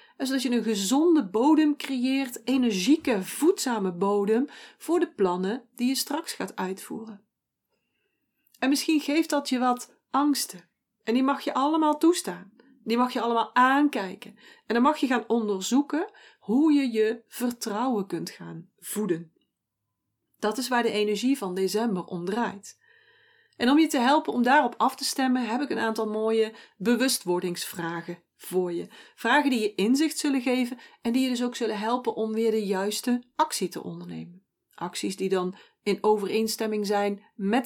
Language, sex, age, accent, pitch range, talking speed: Dutch, female, 40-59, Dutch, 200-270 Hz, 165 wpm